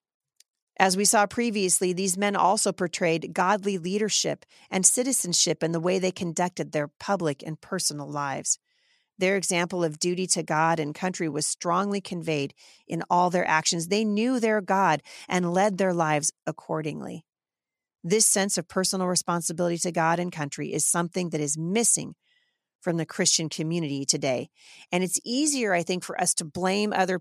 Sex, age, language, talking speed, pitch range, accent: female, 40-59, English, 165 wpm, 160-195 Hz, American